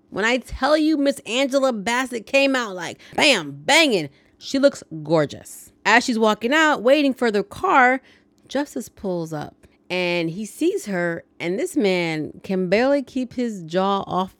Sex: female